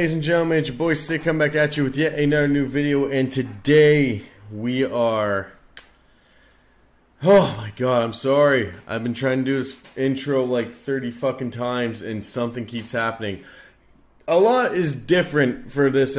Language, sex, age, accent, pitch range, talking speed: English, male, 20-39, American, 110-140 Hz, 170 wpm